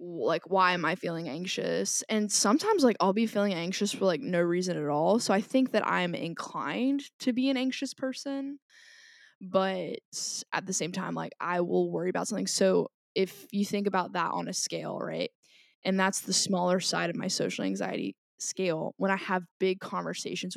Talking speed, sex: 195 wpm, female